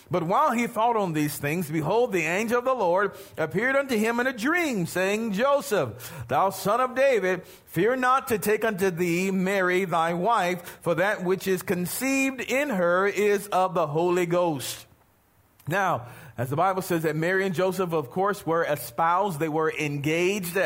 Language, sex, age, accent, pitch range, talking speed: English, male, 40-59, American, 160-210 Hz, 180 wpm